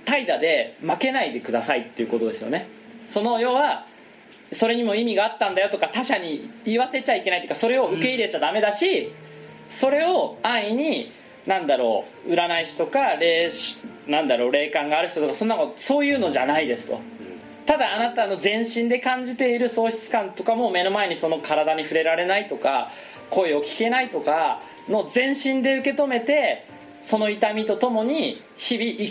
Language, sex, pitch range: Japanese, male, 165-245 Hz